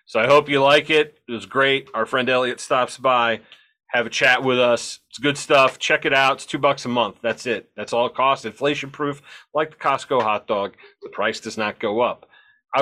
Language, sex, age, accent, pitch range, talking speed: English, male, 30-49, American, 120-155 Hz, 235 wpm